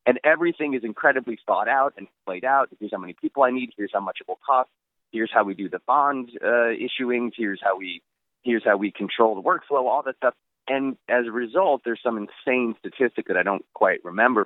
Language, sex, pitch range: English, male, 105-135 Hz